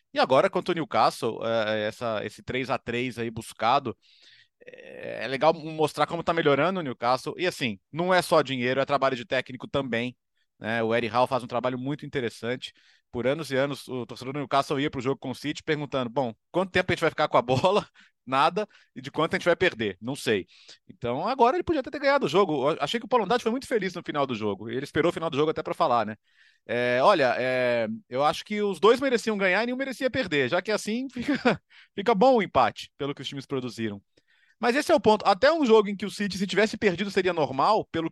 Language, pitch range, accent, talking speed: Portuguese, 130-200 Hz, Brazilian, 235 wpm